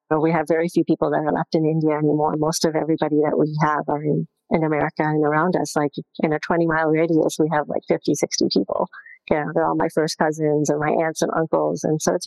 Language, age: English, 40-59